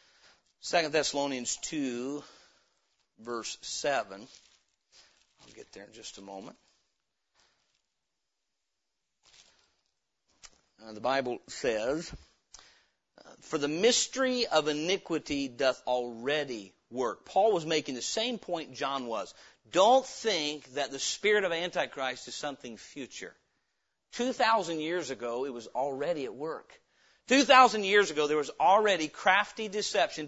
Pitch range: 135-180 Hz